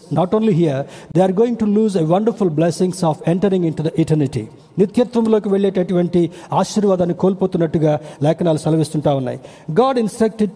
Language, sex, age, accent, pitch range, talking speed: Telugu, male, 60-79, native, 160-200 Hz, 155 wpm